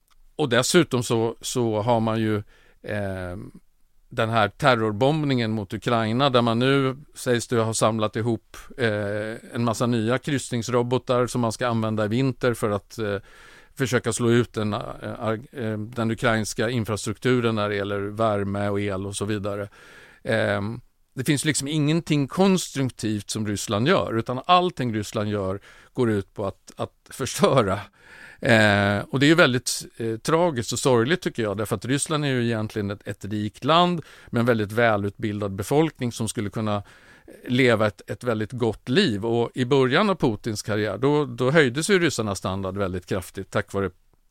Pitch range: 105-130 Hz